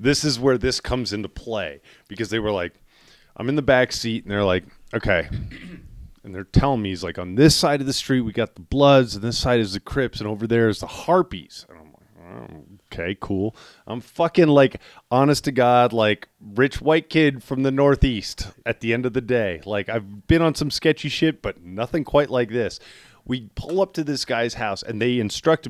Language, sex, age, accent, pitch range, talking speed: English, male, 30-49, American, 110-145 Hz, 215 wpm